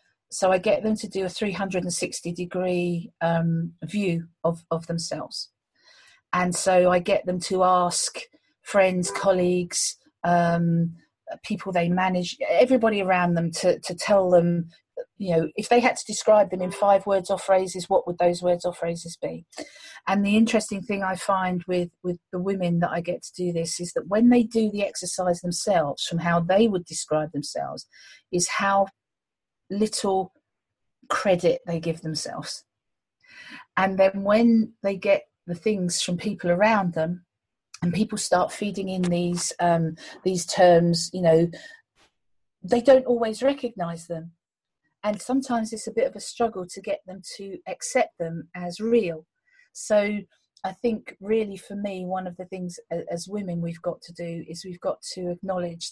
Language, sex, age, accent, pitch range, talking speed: English, female, 40-59, British, 175-210 Hz, 165 wpm